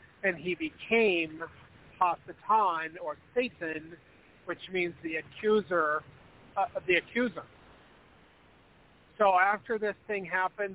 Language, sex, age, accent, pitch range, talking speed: English, male, 40-59, American, 155-185 Hz, 100 wpm